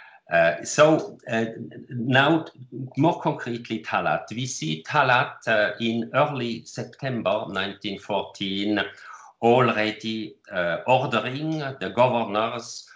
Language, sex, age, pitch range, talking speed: English, male, 50-69, 90-120 Hz, 95 wpm